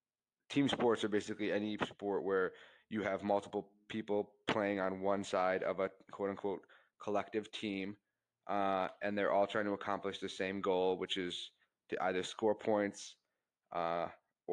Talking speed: 155 wpm